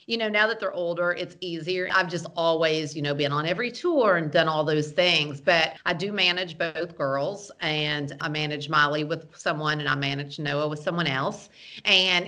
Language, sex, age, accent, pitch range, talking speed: English, female, 40-59, American, 150-175 Hz, 205 wpm